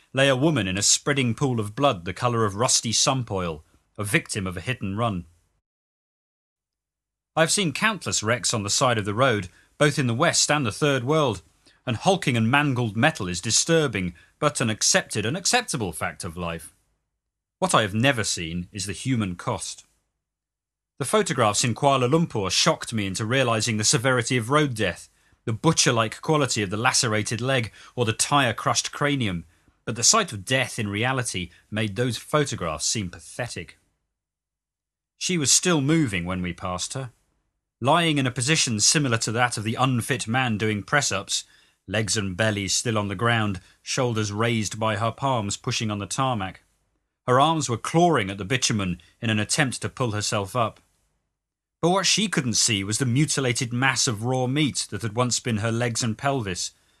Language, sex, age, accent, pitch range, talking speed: English, male, 40-59, British, 100-135 Hz, 180 wpm